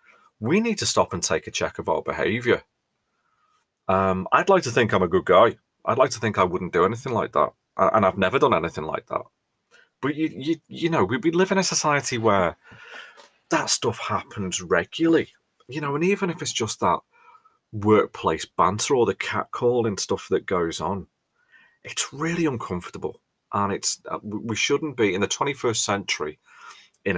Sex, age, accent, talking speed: male, 30-49, British, 185 wpm